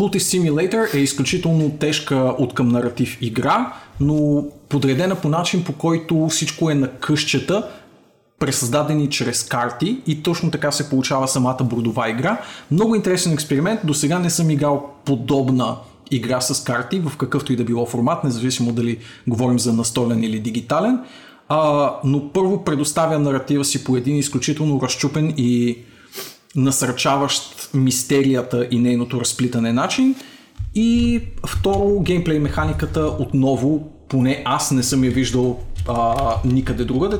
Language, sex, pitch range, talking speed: Bulgarian, male, 125-160 Hz, 135 wpm